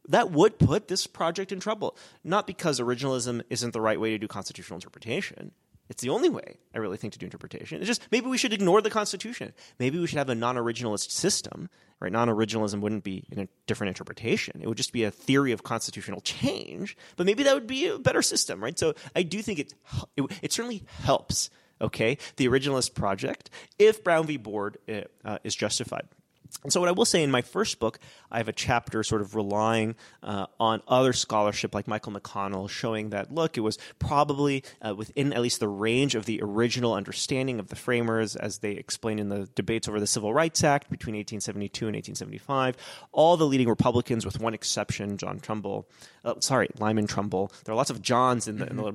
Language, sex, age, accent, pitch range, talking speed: English, male, 30-49, American, 105-145 Hz, 205 wpm